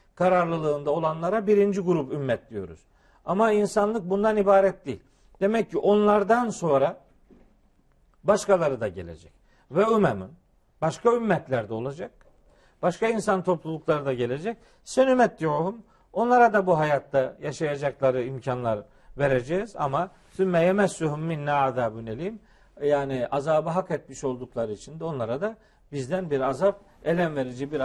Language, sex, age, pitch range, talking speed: Turkish, male, 50-69, 140-195 Hz, 120 wpm